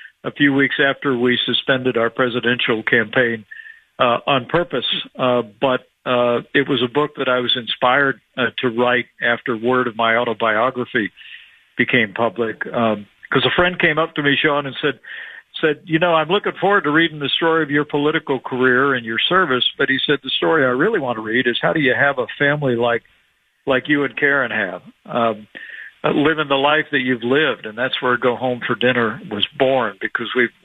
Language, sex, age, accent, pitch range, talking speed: English, male, 50-69, American, 120-145 Hz, 200 wpm